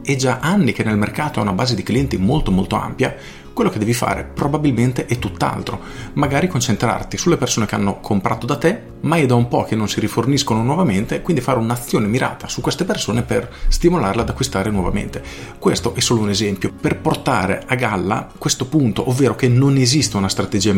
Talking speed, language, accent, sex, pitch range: 200 wpm, Italian, native, male, 100-125 Hz